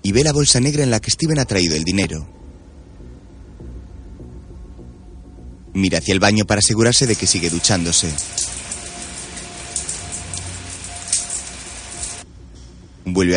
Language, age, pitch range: Spanish, 30-49, 85-100 Hz